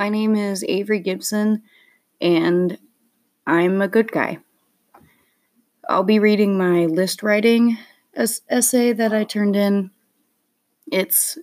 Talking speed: 115 wpm